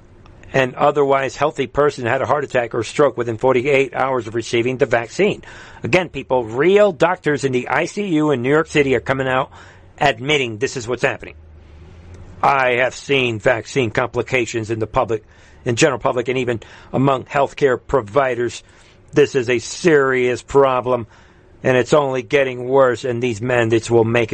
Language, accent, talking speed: English, American, 165 wpm